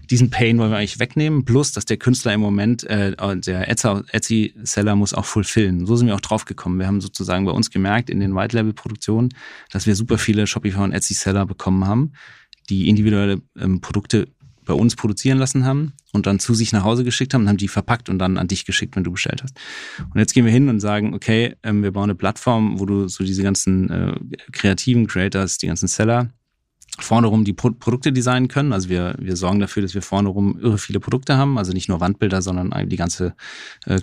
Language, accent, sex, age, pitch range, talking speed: German, German, male, 30-49, 95-115 Hz, 220 wpm